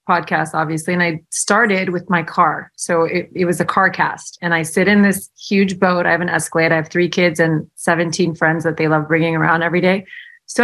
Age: 30-49